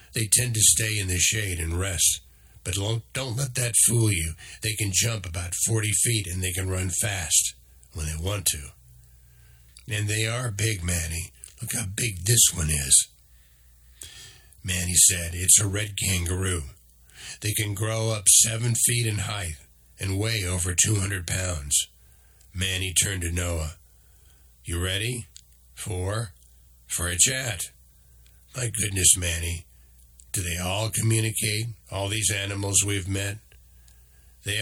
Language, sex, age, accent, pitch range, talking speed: English, male, 60-79, American, 75-105 Hz, 145 wpm